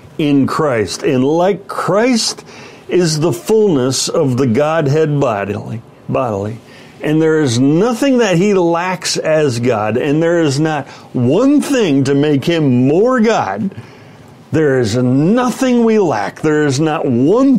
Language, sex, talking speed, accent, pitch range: English, male, 145 wpm, American, 130-195 Hz